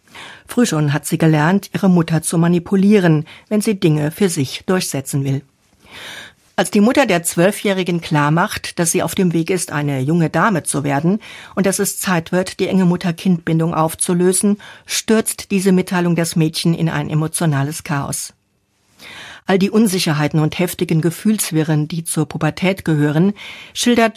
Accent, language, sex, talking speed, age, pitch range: German, German, female, 155 wpm, 60-79, 155-190 Hz